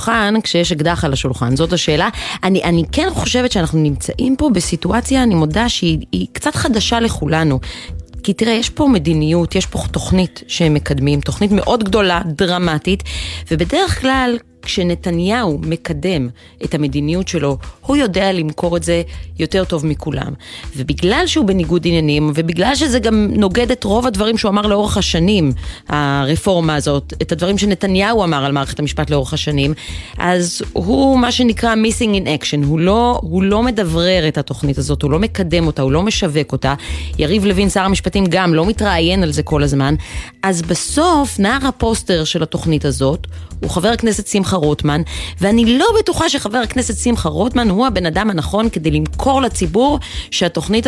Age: 30-49